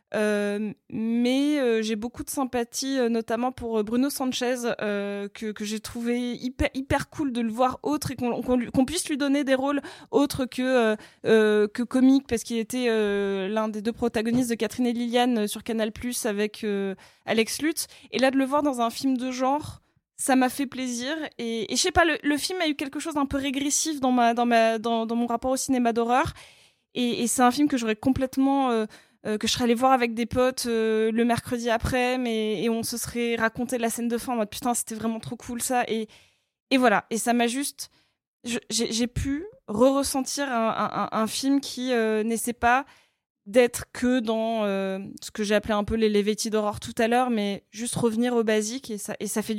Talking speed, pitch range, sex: 230 wpm, 225-260 Hz, female